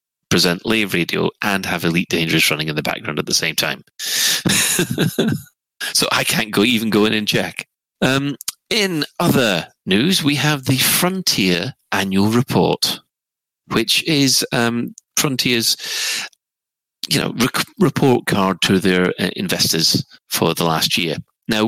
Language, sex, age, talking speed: English, male, 30-49, 145 wpm